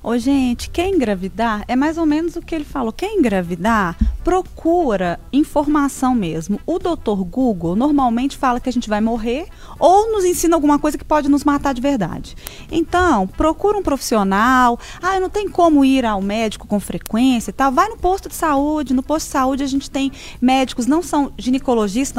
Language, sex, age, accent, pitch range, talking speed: Portuguese, female, 20-39, Brazilian, 225-325 Hz, 185 wpm